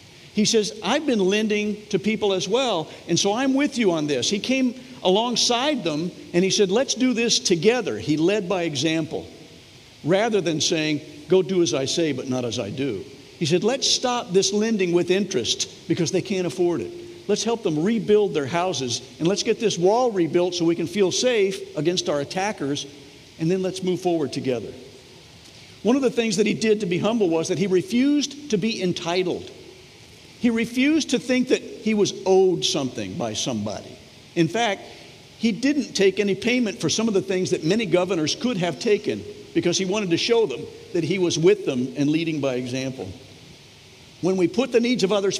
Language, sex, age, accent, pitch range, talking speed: English, male, 60-79, American, 165-220 Hz, 200 wpm